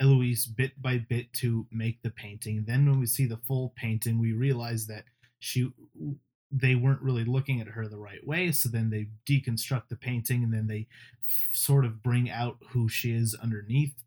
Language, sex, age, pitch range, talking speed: English, male, 20-39, 115-130 Hz, 190 wpm